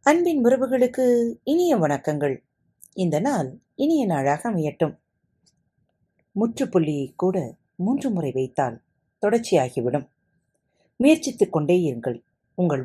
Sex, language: female, Tamil